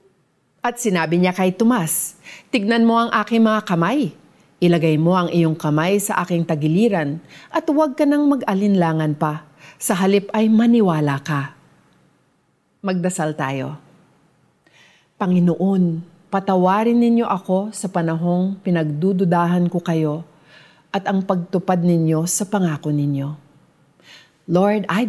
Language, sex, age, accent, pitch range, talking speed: Filipino, female, 40-59, native, 160-220 Hz, 120 wpm